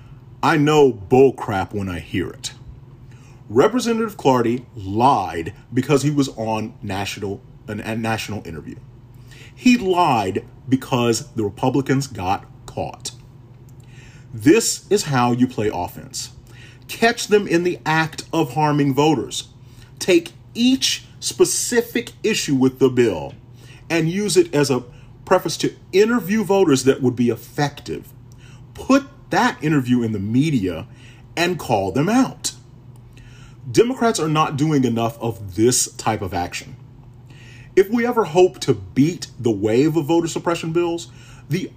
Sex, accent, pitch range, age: male, American, 115-145 Hz, 40-59